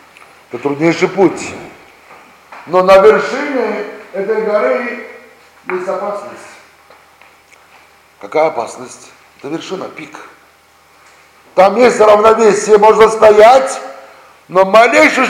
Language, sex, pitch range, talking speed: Russian, male, 170-220 Hz, 85 wpm